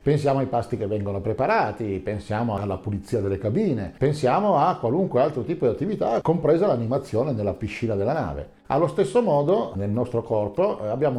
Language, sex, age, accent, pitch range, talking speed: Italian, male, 50-69, native, 95-135 Hz, 165 wpm